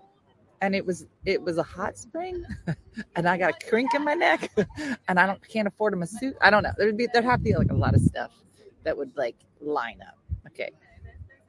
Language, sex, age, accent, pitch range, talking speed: English, female, 30-49, American, 150-235 Hz, 230 wpm